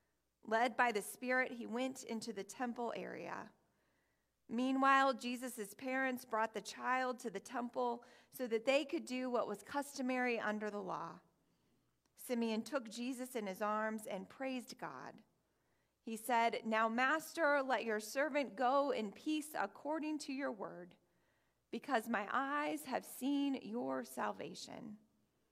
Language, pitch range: English, 220-270 Hz